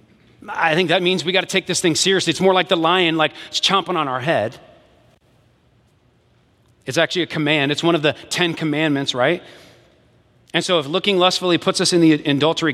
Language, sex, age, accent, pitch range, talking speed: English, male, 30-49, American, 140-180 Hz, 205 wpm